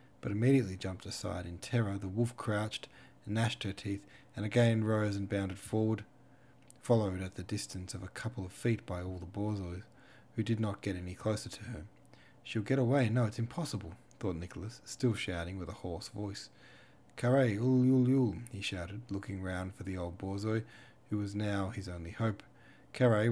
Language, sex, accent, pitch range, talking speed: English, male, Australian, 100-120 Hz, 185 wpm